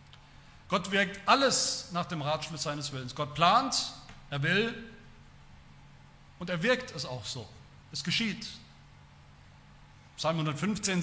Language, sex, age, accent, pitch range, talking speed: German, male, 40-59, German, 155-210 Hz, 120 wpm